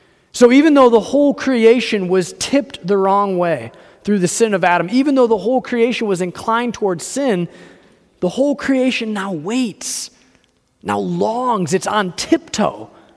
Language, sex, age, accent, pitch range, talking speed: English, male, 30-49, American, 185-240 Hz, 160 wpm